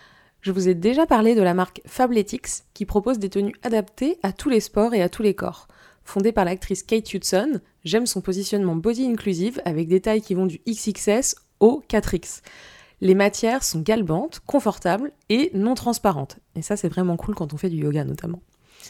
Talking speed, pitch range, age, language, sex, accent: 195 wpm, 180-230 Hz, 20-39, French, female, French